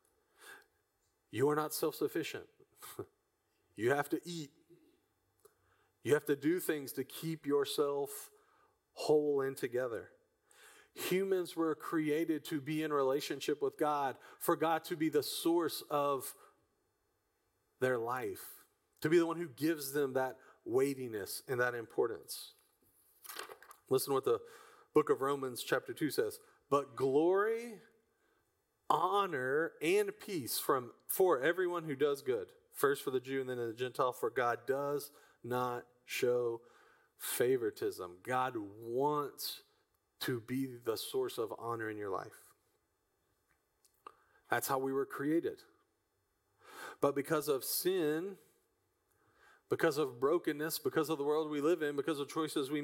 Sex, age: male, 40-59